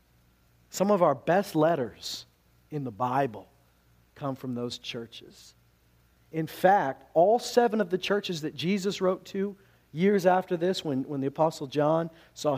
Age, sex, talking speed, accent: 40-59, male, 155 wpm, American